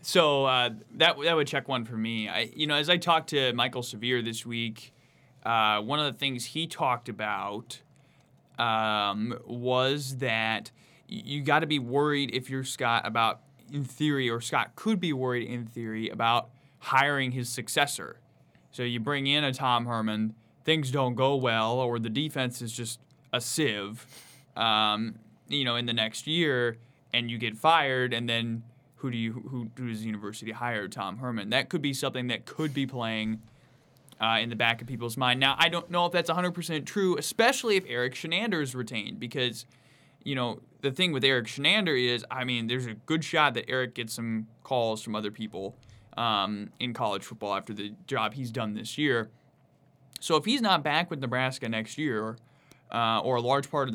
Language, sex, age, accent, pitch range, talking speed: English, male, 20-39, American, 115-140 Hz, 190 wpm